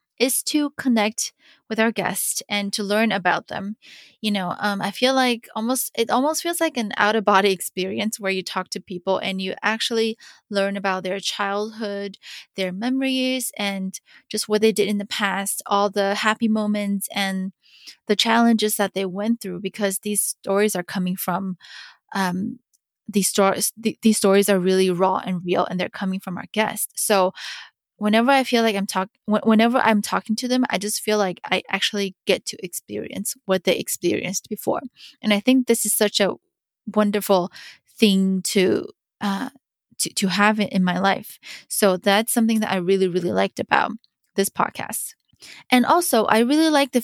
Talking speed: 180 wpm